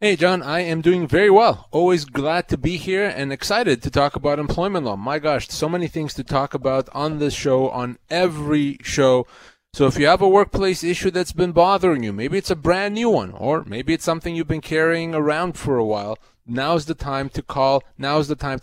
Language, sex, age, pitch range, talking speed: English, male, 30-49, 130-165 Hz, 220 wpm